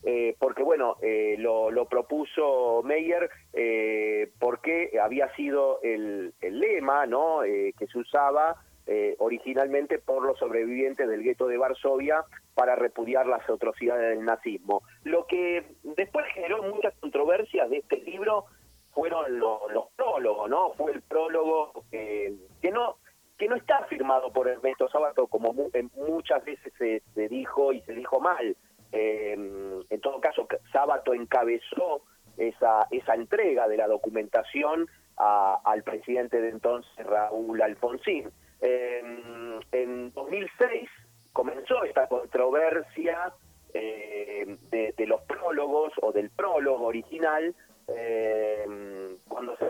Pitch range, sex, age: 115-175 Hz, male, 40-59